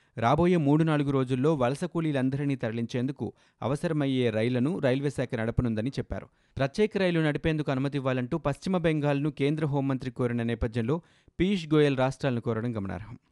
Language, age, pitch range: Telugu, 30-49, 115-150 Hz